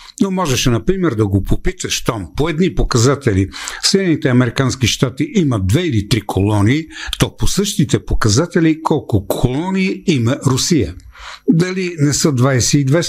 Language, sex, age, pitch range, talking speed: Bulgarian, male, 60-79, 105-155 Hz, 135 wpm